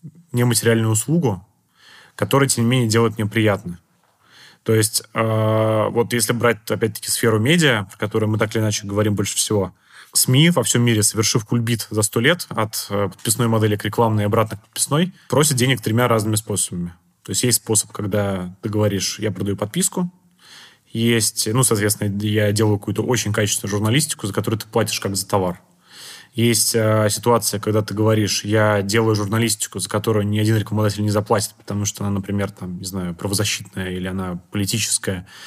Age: 20-39